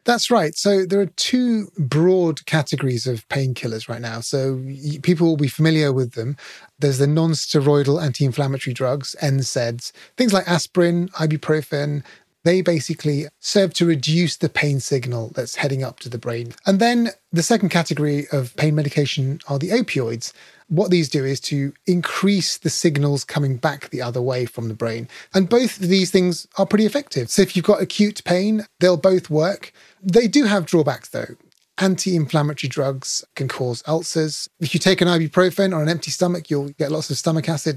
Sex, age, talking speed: male, 30-49, 180 wpm